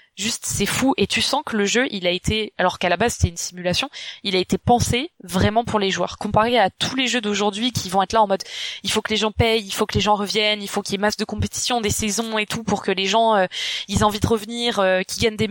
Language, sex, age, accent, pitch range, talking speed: French, female, 20-39, French, 190-225 Hz, 300 wpm